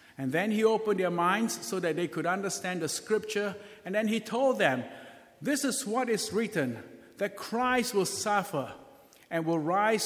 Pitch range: 165-220 Hz